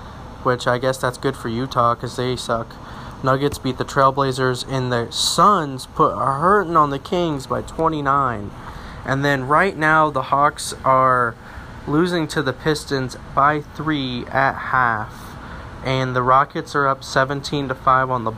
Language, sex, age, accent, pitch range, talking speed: English, male, 20-39, American, 120-145 Hz, 165 wpm